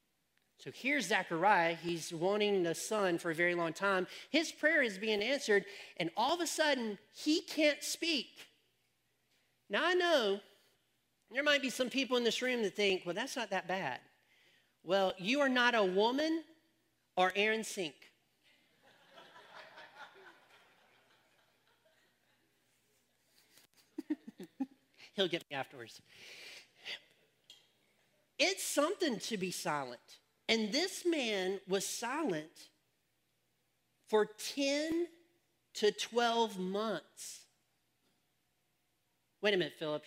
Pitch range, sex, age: 175-275 Hz, male, 40-59